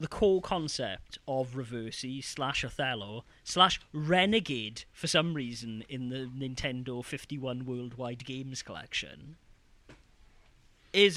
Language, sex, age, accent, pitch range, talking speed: English, male, 30-49, British, 110-150 Hz, 105 wpm